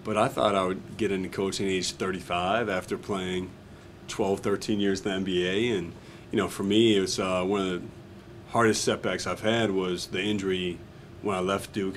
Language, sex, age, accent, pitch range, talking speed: English, male, 40-59, American, 95-115 Hz, 205 wpm